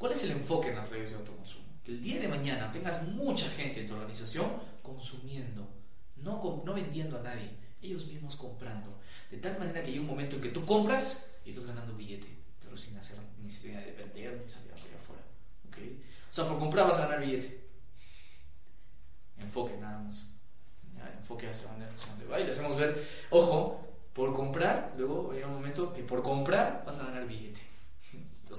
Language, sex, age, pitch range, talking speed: Spanish, male, 20-39, 110-155 Hz, 195 wpm